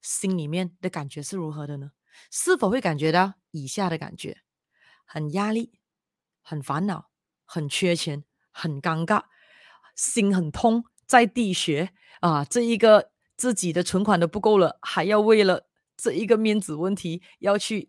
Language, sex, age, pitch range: Chinese, female, 30-49, 170-230 Hz